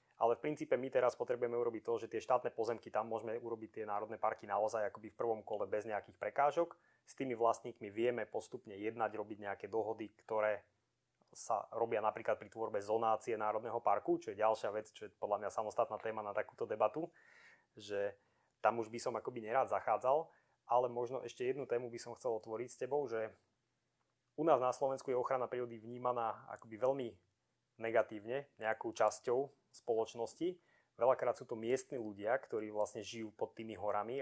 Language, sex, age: Slovak, male, 20-39